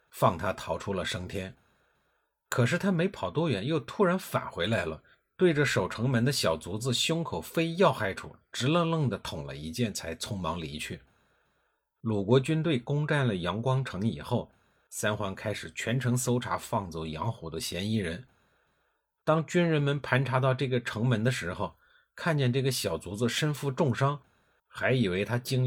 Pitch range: 100-140 Hz